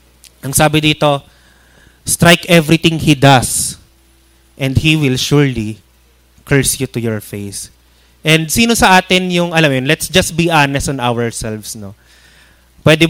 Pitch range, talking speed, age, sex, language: 110-155 Hz, 140 wpm, 20-39, male, Filipino